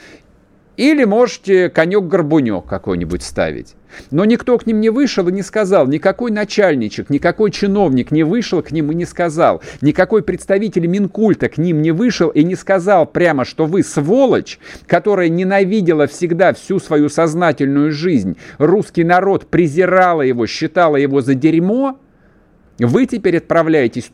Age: 50-69